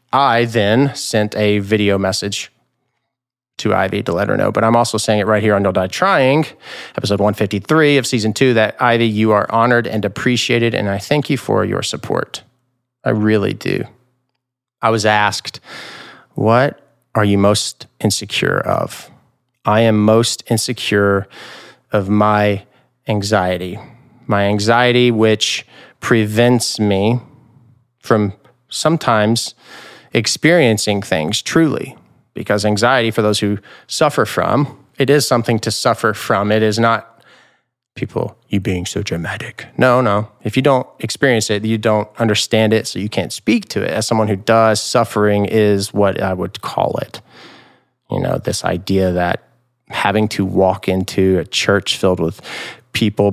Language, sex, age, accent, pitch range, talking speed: English, male, 30-49, American, 105-125 Hz, 150 wpm